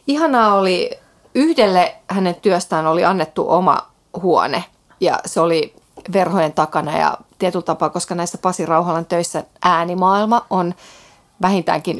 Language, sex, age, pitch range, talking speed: Finnish, female, 30-49, 170-215 Hz, 125 wpm